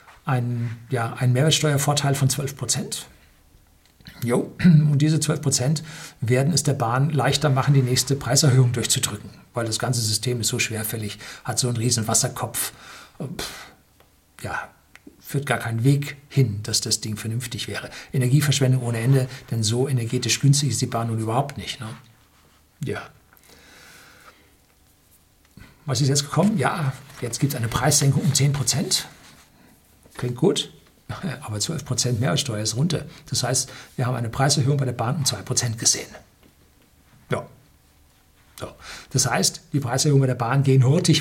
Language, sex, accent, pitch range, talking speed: German, male, German, 115-140 Hz, 145 wpm